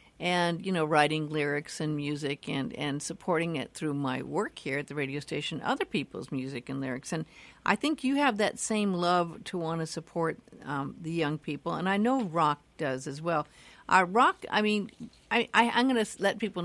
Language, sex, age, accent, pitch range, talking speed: English, female, 60-79, American, 155-195 Hz, 215 wpm